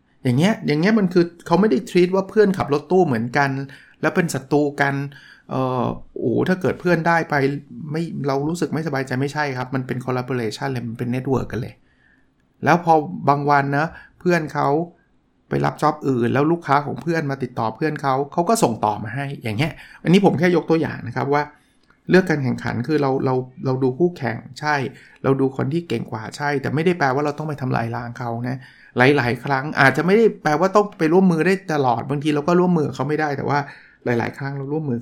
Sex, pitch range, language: male, 125-160 Hz, Thai